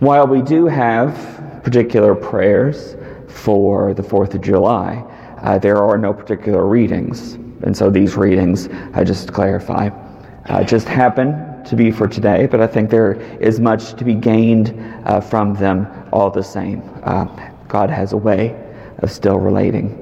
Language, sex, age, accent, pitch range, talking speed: English, male, 40-59, American, 100-120 Hz, 170 wpm